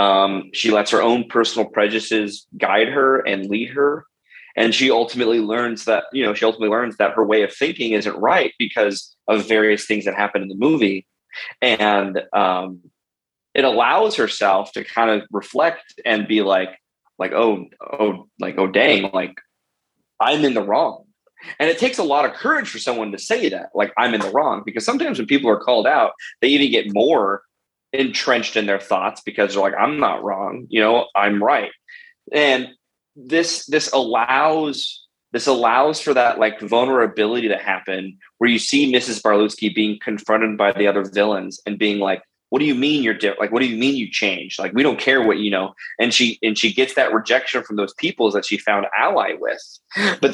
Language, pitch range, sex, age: English, 105-130 Hz, male, 20-39